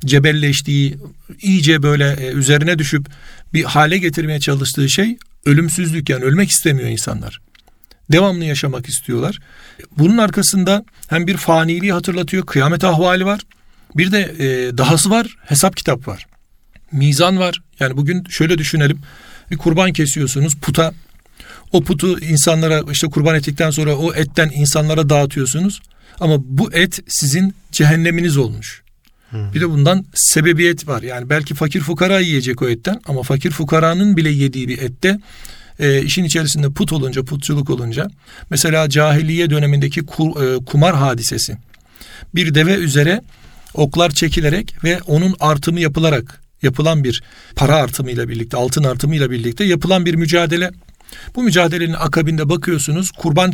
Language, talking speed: Turkish, 135 wpm